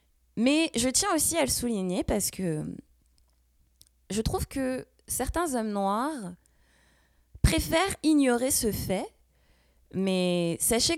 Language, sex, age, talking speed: French, female, 20-39, 115 wpm